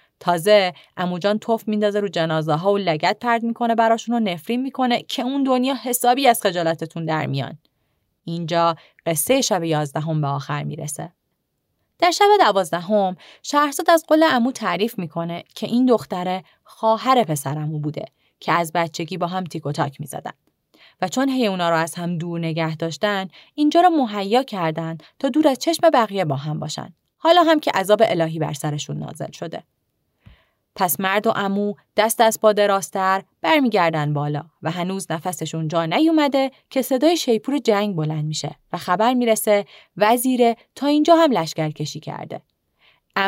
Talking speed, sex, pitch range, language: 160 wpm, female, 165-235 Hz, Persian